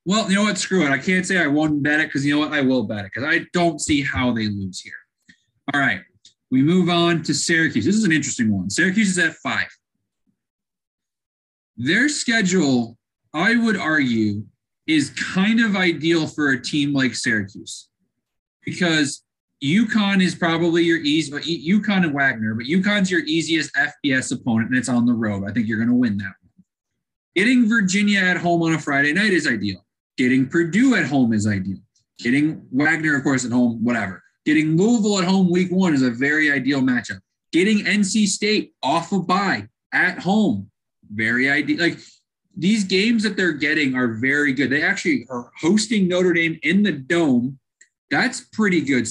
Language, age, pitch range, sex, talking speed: English, 20-39, 130-190 Hz, male, 190 wpm